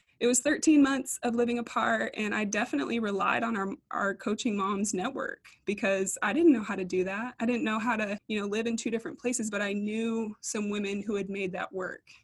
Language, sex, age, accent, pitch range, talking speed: English, female, 20-39, American, 200-240 Hz, 230 wpm